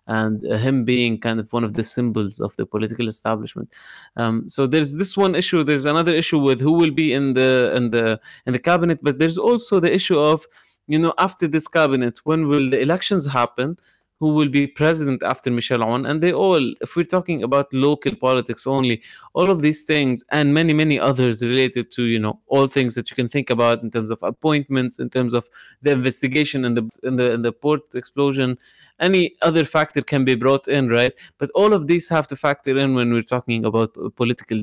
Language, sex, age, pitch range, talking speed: English, male, 20-39, 120-150 Hz, 215 wpm